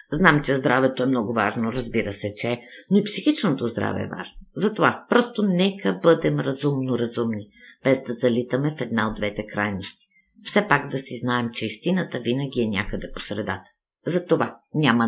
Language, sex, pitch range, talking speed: Bulgarian, female, 110-165 Hz, 165 wpm